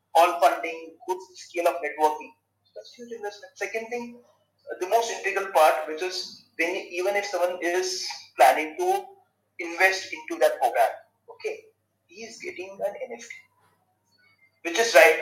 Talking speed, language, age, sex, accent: 145 wpm, Hindi, 30-49, male, native